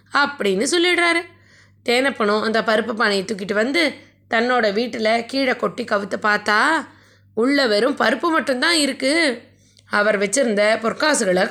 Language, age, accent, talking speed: Tamil, 20-39, native, 115 wpm